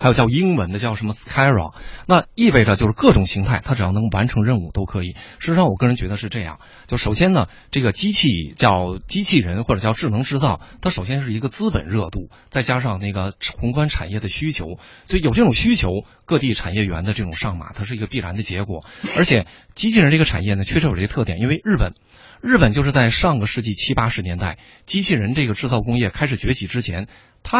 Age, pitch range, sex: 20-39, 95-125 Hz, male